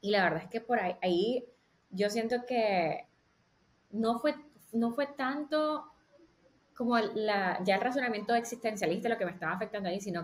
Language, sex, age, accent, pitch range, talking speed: English, female, 20-39, American, 180-225 Hz, 165 wpm